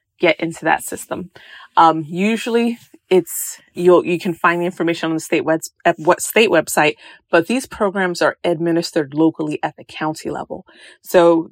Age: 30-49